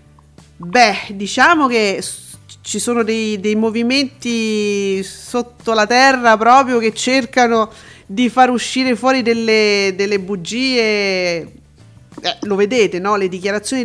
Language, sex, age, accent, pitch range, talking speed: Italian, female, 40-59, native, 195-235 Hz, 115 wpm